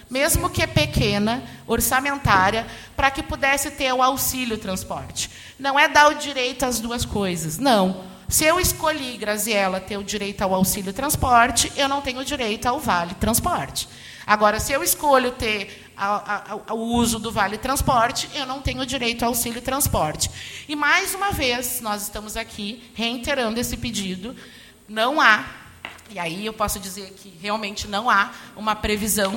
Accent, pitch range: Brazilian, 205-260 Hz